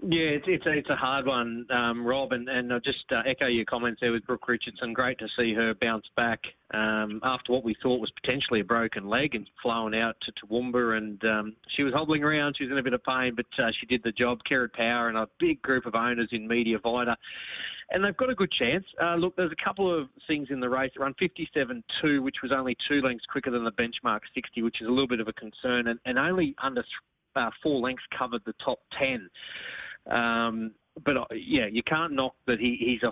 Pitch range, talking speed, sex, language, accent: 115-140 Hz, 240 wpm, male, English, Australian